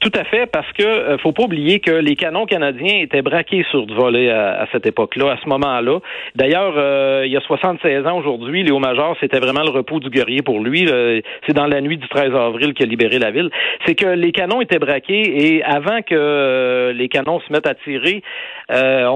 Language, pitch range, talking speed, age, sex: French, 130-160 Hz, 220 wpm, 40-59, male